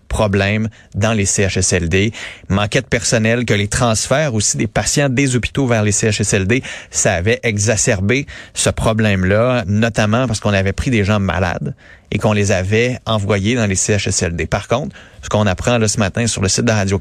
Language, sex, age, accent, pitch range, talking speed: French, male, 30-49, Canadian, 100-125 Hz, 180 wpm